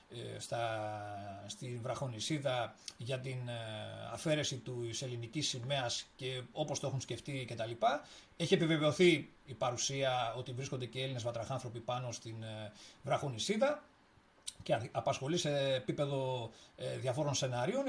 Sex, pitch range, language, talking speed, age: male, 130-180 Hz, Greek, 110 wpm, 40-59